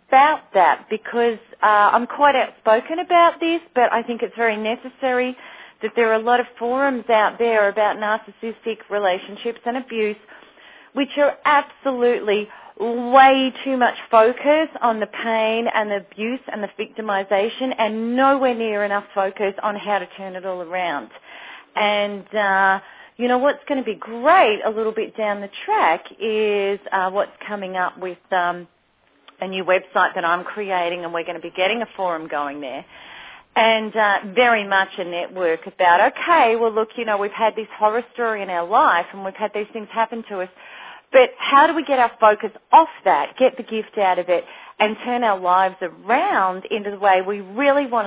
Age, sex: 40-59, female